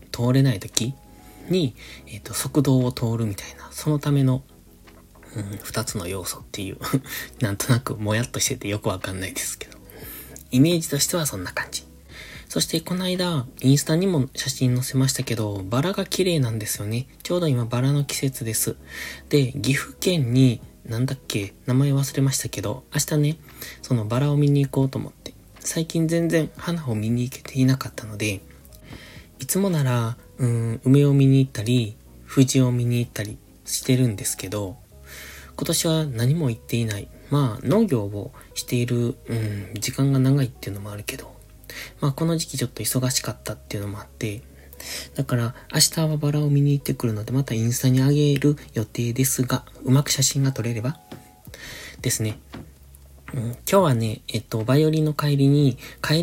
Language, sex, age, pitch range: Japanese, male, 20-39, 110-140 Hz